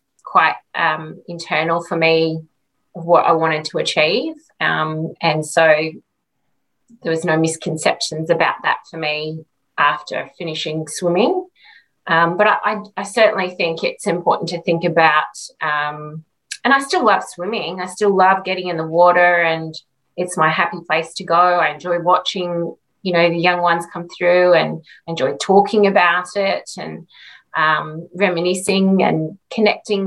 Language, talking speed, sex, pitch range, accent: English, 150 wpm, female, 160-185 Hz, Australian